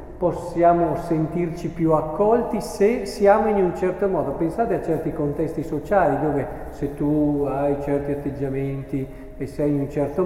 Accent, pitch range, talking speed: native, 150-195 Hz, 150 wpm